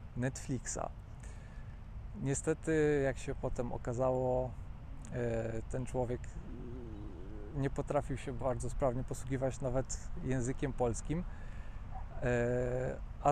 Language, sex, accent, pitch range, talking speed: Polish, male, native, 115-135 Hz, 80 wpm